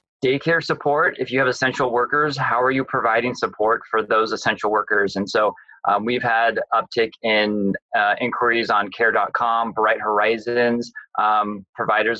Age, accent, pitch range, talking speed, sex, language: 20-39, American, 100-120 Hz, 150 wpm, male, English